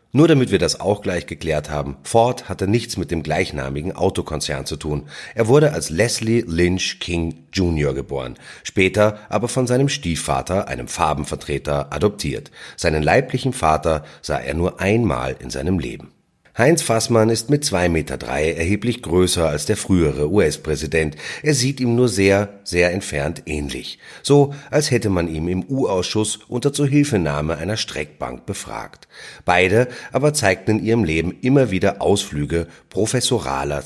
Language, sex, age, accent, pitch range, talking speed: German, male, 30-49, German, 80-120 Hz, 150 wpm